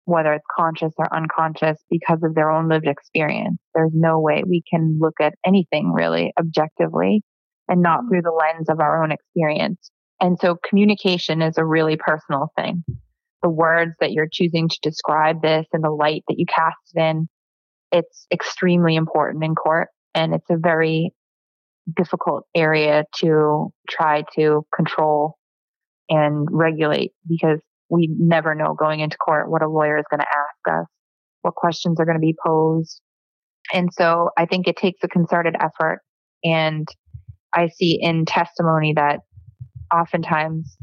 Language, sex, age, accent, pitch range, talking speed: English, female, 20-39, American, 155-170 Hz, 160 wpm